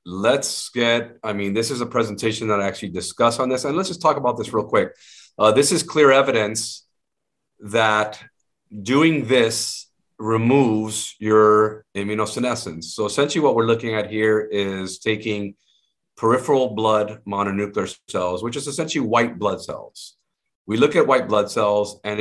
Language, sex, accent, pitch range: English, male, American, 105-135 Hz